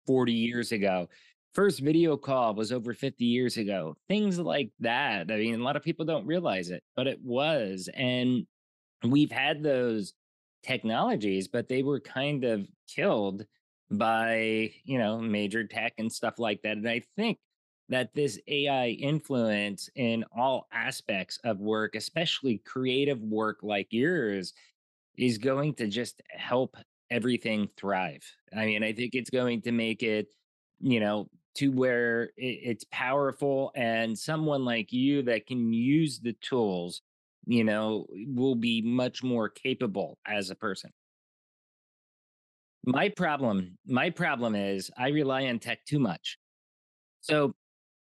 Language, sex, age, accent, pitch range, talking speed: English, male, 30-49, American, 110-135 Hz, 145 wpm